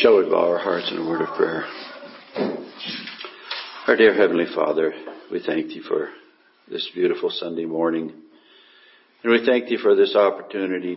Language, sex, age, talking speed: English, male, 60-79, 160 wpm